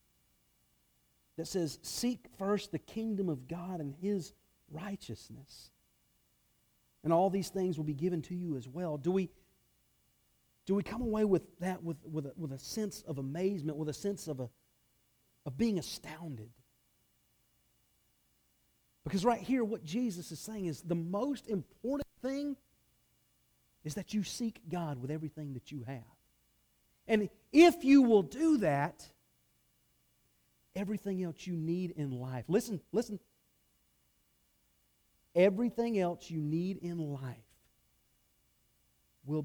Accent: American